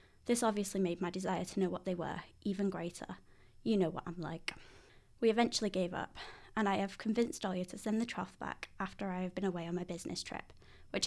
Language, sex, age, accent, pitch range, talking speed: English, female, 20-39, British, 180-215 Hz, 220 wpm